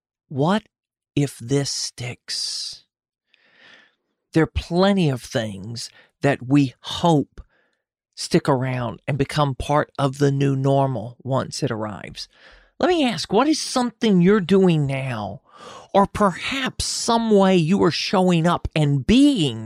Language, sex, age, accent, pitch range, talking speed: English, male, 40-59, American, 130-175 Hz, 130 wpm